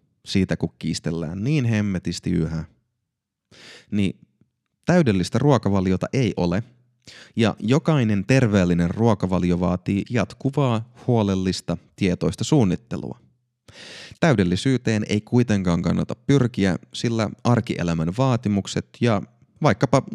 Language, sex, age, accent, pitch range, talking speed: Finnish, male, 30-49, native, 90-120 Hz, 90 wpm